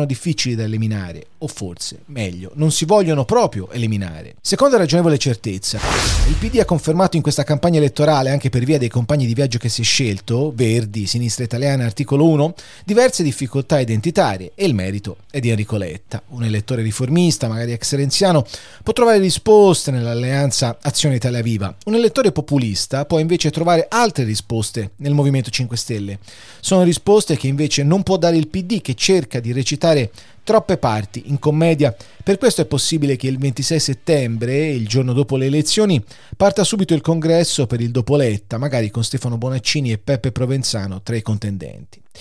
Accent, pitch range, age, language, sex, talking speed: native, 115-155 Hz, 30-49, Italian, male, 170 wpm